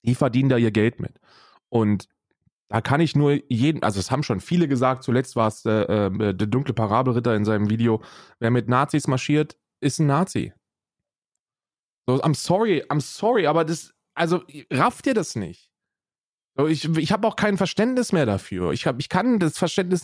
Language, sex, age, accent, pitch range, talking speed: German, male, 20-39, German, 120-170 Hz, 190 wpm